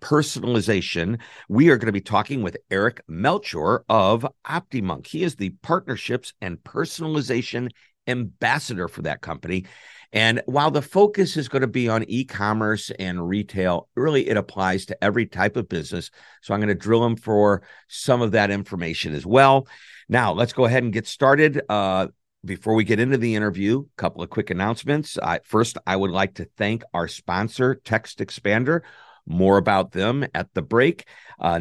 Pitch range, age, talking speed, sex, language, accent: 95-130 Hz, 50-69, 175 wpm, male, English, American